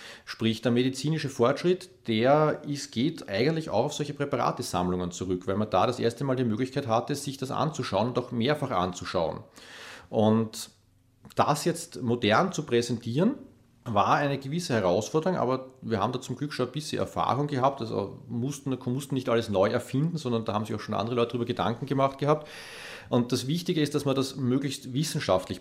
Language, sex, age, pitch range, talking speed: German, male, 40-59, 115-140 Hz, 185 wpm